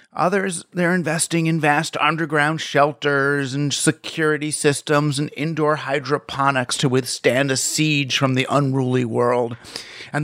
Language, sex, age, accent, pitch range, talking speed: English, male, 30-49, American, 135-180 Hz, 130 wpm